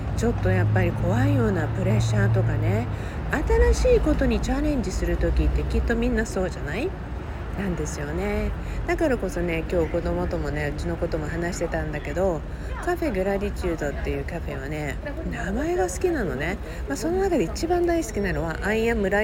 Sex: female